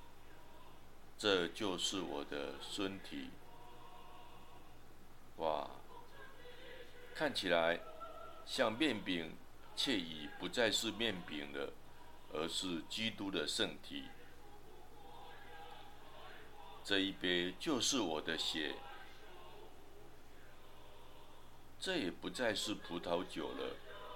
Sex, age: male, 60-79